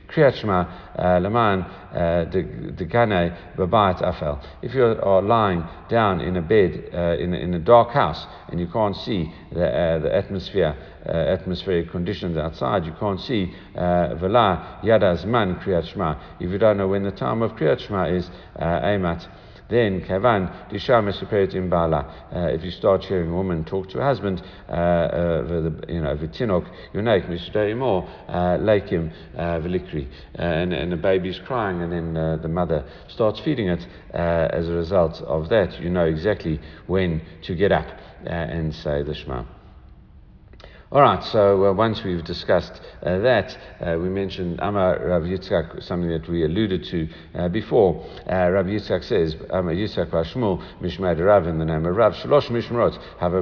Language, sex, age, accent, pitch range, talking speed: English, male, 60-79, British, 85-100 Hz, 150 wpm